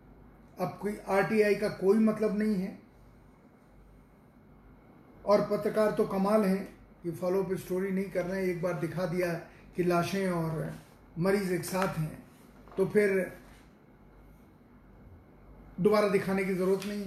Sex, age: male, 30-49